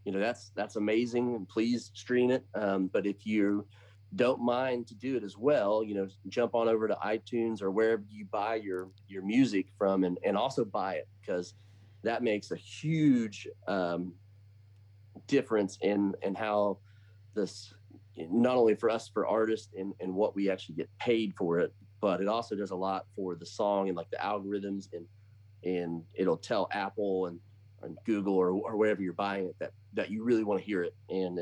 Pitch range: 95-110 Hz